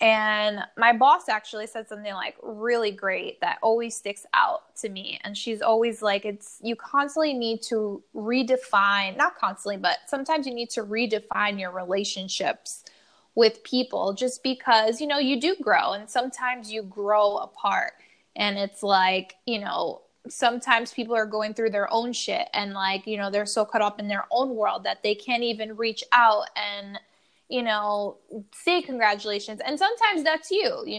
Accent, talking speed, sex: American, 175 wpm, female